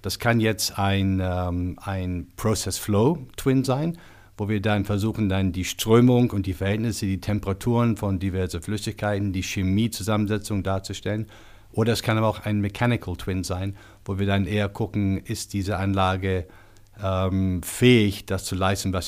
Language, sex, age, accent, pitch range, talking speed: German, male, 60-79, German, 95-110 Hz, 150 wpm